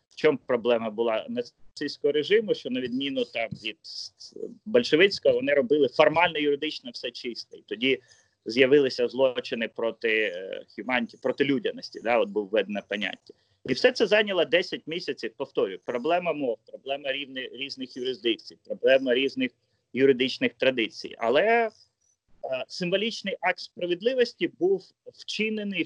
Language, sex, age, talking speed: Ukrainian, male, 30-49, 125 wpm